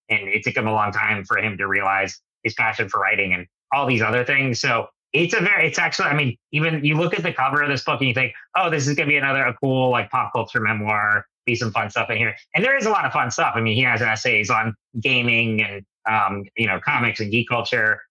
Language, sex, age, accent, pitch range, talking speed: English, male, 30-49, American, 110-130 Hz, 270 wpm